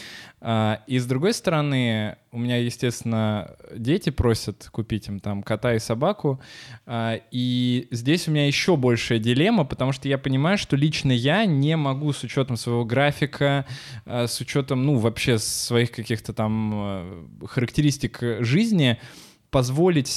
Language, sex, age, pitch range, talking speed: Russian, male, 20-39, 115-140 Hz, 135 wpm